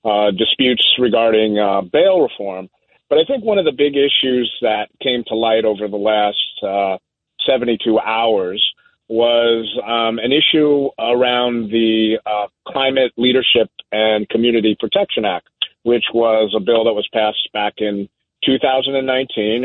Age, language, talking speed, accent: 40-59, English, 145 wpm, American